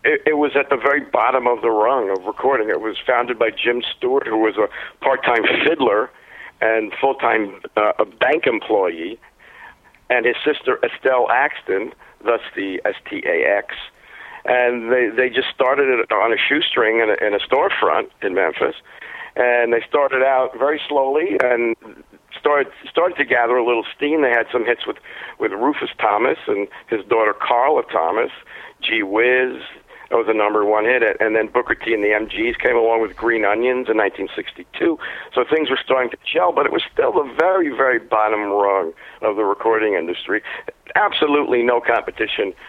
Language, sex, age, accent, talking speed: English, male, 60-79, American, 180 wpm